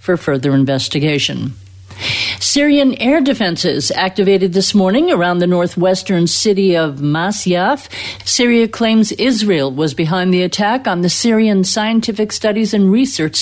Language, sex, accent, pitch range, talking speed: English, female, American, 155-220 Hz, 130 wpm